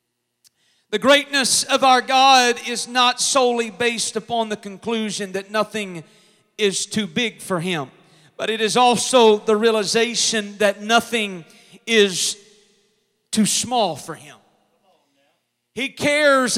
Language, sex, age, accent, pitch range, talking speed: English, male, 40-59, American, 200-245 Hz, 125 wpm